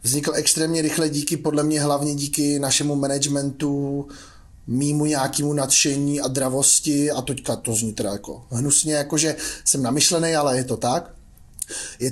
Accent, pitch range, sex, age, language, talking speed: Czech, 140-160 Hz, male, 30-49, English, 150 wpm